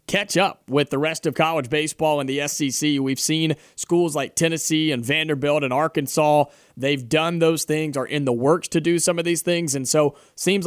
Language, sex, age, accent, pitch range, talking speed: English, male, 30-49, American, 150-180 Hz, 210 wpm